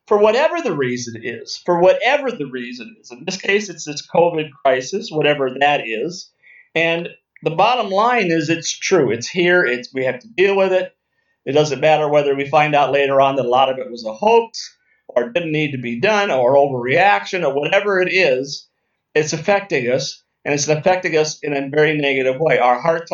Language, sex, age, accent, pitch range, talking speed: English, male, 50-69, American, 135-175 Hz, 200 wpm